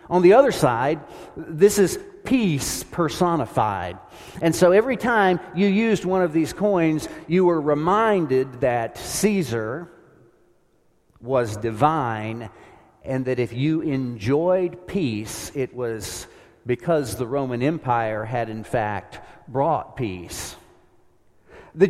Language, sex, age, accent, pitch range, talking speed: English, male, 40-59, American, 125-195 Hz, 120 wpm